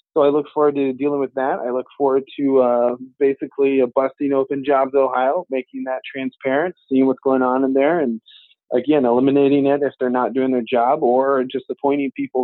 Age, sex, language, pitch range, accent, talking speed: 20-39, male, English, 125-145 Hz, American, 200 wpm